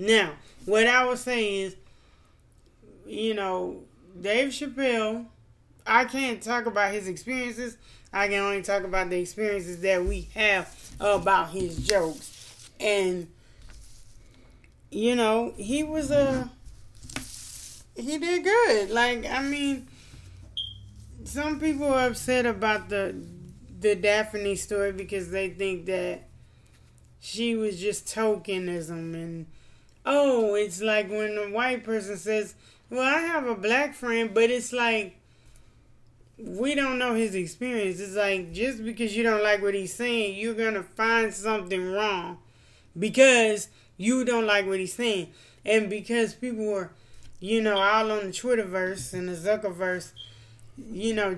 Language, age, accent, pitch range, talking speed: English, 20-39, American, 185-235 Hz, 140 wpm